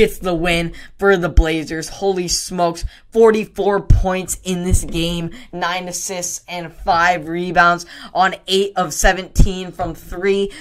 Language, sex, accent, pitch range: English, female, American, 165-200 Hz